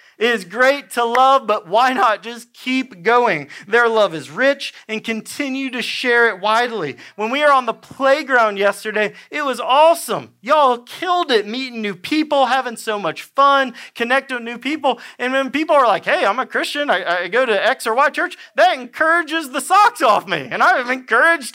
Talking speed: 200 wpm